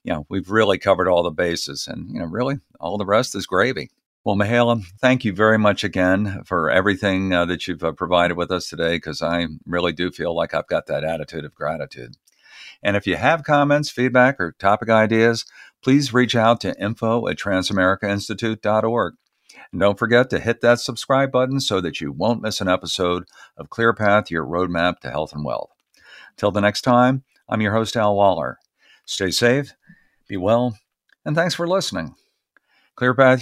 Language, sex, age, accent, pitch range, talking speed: English, male, 50-69, American, 90-120 Hz, 190 wpm